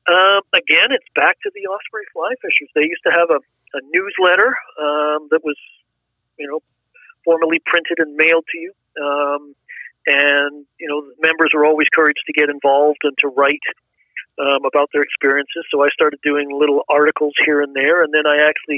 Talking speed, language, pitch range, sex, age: 185 wpm, English, 140-165 Hz, male, 40-59